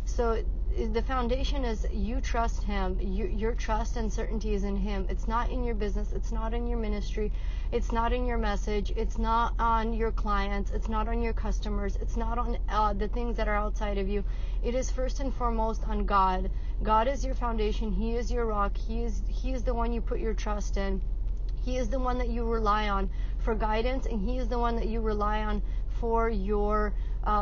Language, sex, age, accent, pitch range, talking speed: English, female, 30-49, American, 205-230 Hz, 215 wpm